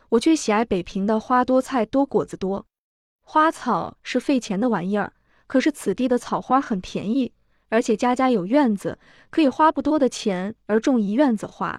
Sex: female